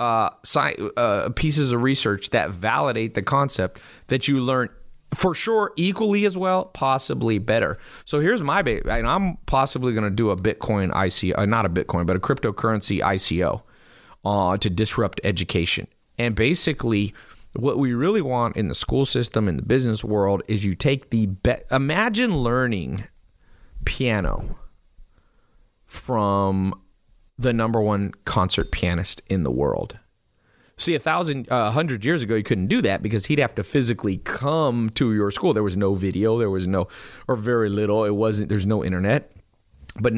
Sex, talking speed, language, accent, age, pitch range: male, 165 wpm, English, American, 30-49, 105-135 Hz